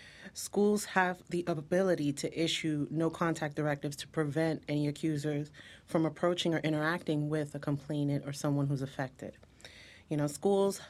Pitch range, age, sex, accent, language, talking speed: 150-170 Hz, 30-49, female, American, English, 145 wpm